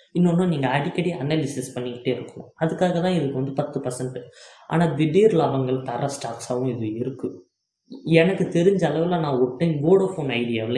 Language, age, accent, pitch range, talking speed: Tamil, 20-39, native, 125-170 Hz, 150 wpm